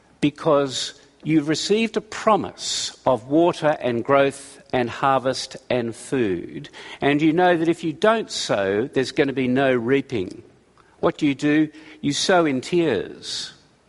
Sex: male